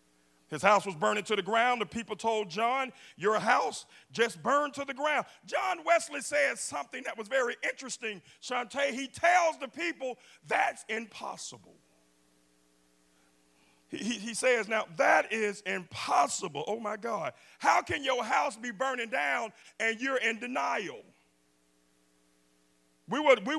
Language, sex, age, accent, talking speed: English, male, 40-59, American, 140 wpm